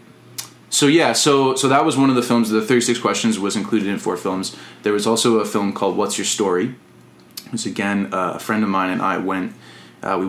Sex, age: male, 20-39